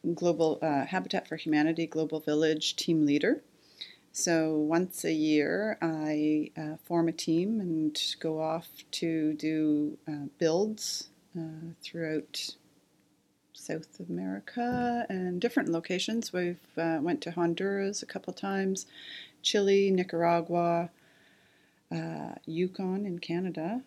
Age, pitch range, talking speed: 40-59, 155-180 Hz, 115 wpm